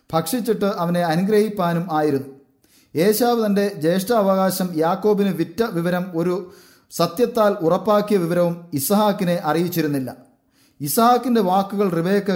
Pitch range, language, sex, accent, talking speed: 160-205 Hz, English, male, Indian, 95 wpm